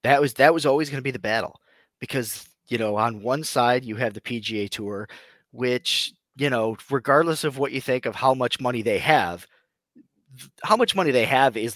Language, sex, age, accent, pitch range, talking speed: English, male, 30-49, American, 110-140 Hz, 210 wpm